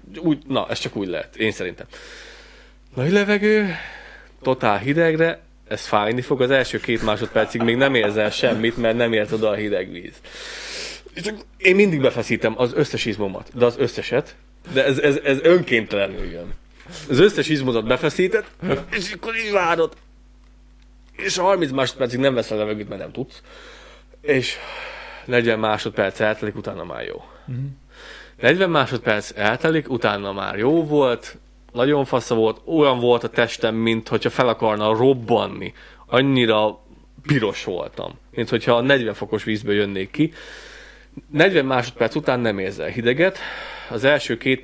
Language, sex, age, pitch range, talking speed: Hungarian, male, 20-39, 110-145 Hz, 145 wpm